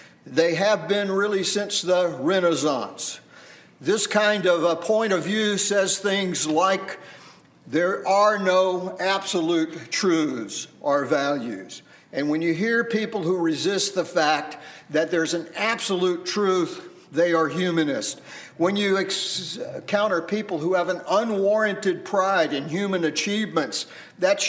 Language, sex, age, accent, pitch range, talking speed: English, male, 50-69, American, 160-195 Hz, 130 wpm